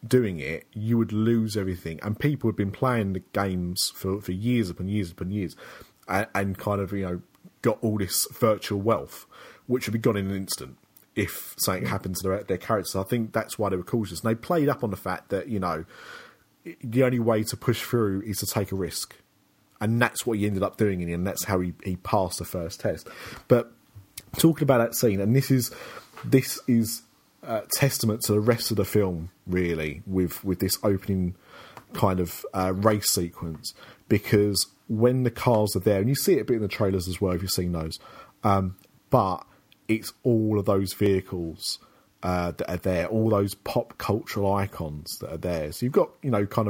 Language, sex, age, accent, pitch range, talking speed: English, male, 30-49, British, 95-115 Hz, 210 wpm